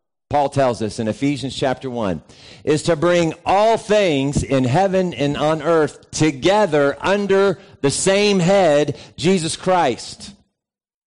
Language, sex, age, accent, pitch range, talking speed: English, male, 50-69, American, 115-175 Hz, 130 wpm